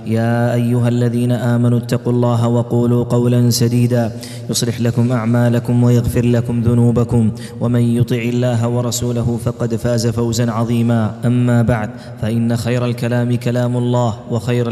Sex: male